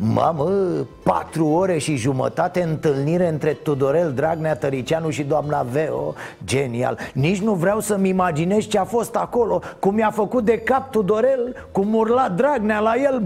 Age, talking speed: 30-49, 155 wpm